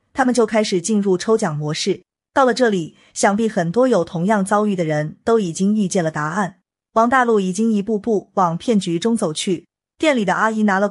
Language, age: Chinese, 20-39